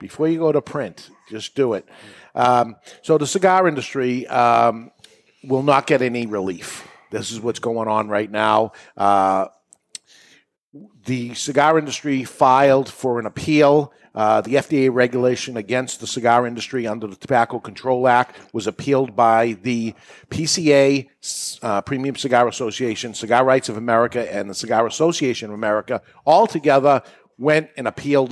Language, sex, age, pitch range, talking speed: English, male, 50-69, 115-140 Hz, 150 wpm